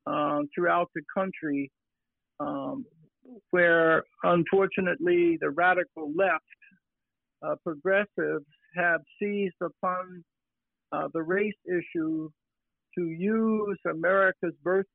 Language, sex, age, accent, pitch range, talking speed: English, male, 60-79, American, 160-190 Hz, 90 wpm